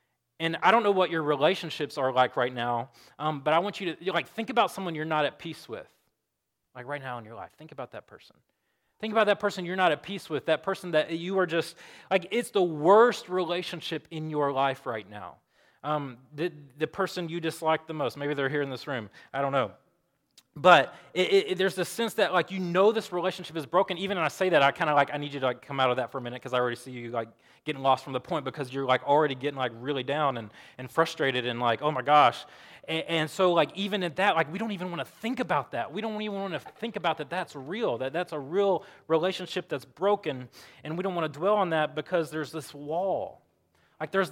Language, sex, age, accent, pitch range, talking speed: English, male, 30-49, American, 140-185 Hz, 255 wpm